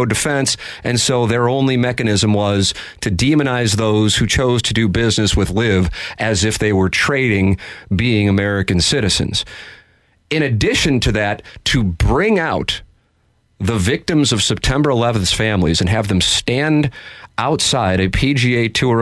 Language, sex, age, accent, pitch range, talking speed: English, male, 40-59, American, 95-125 Hz, 145 wpm